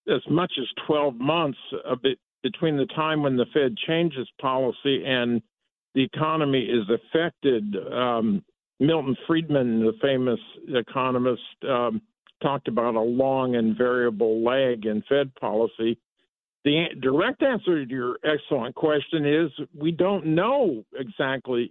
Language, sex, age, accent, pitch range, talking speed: English, male, 50-69, American, 125-155 Hz, 135 wpm